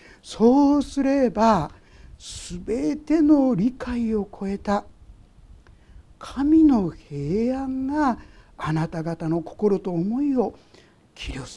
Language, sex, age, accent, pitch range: Japanese, male, 60-79, native, 205-315 Hz